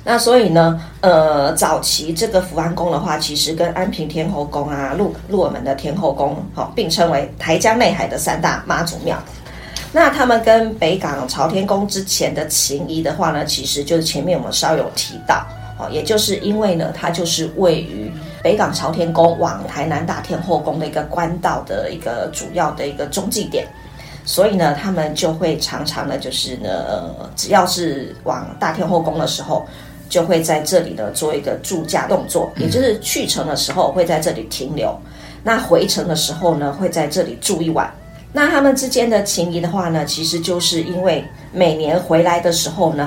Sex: female